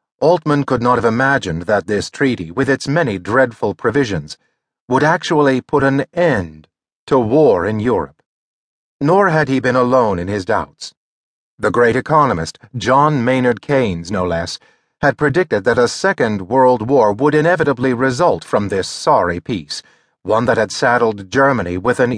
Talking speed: 160 wpm